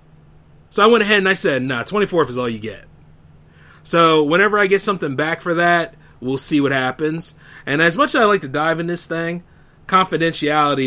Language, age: English, 30-49